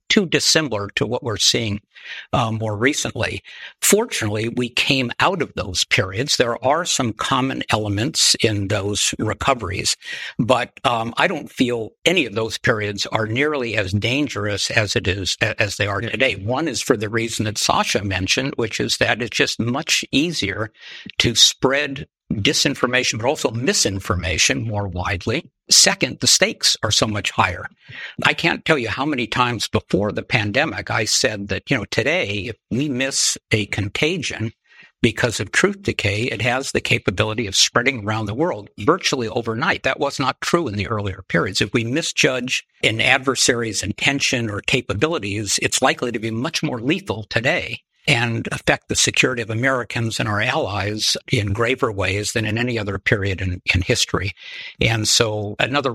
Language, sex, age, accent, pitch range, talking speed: English, male, 60-79, American, 105-130 Hz, 170 wpm